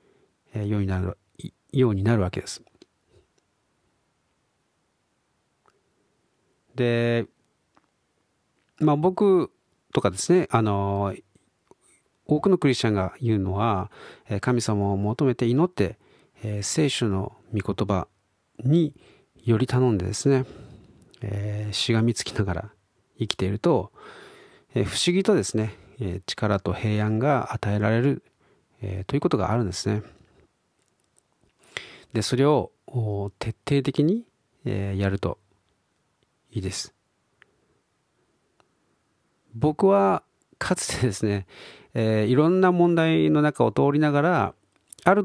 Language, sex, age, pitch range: Japanese, male, 40-59, 100-145 Hz